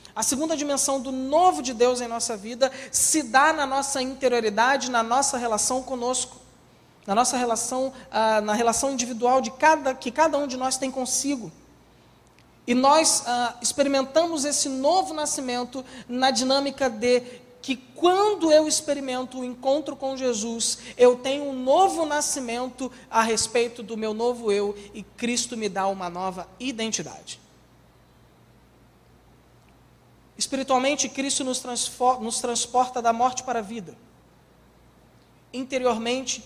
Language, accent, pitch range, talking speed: Portuguese, Brazilian, 230-270 Hz, 130 wpm